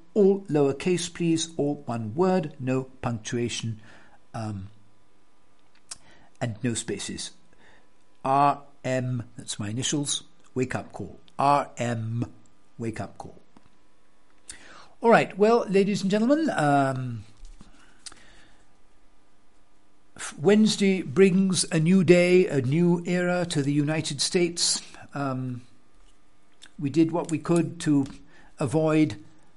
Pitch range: 120-170 Hz